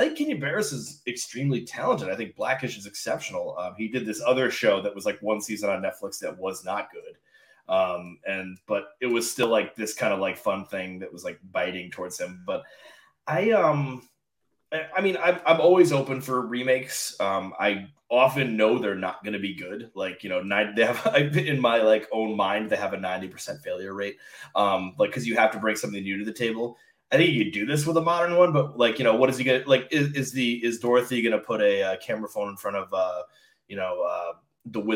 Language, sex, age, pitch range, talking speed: English, male, 20-39, 105-150 Hz, 240 wpm